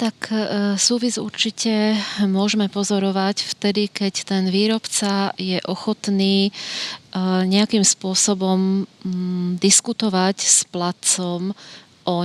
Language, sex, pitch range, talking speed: Slovak, female, 185-205 Hz, 85 wpm